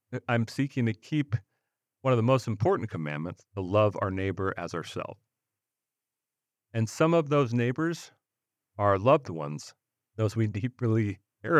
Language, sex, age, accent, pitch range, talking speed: English, male, 40-59, American, 100-125 Hz, 150 wpm